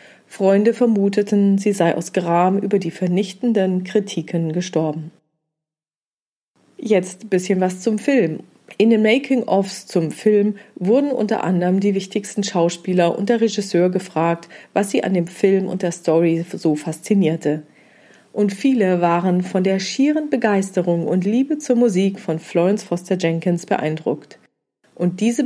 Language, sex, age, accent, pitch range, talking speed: German, female, 40-59, German, 165-210 Hz, 140 wpm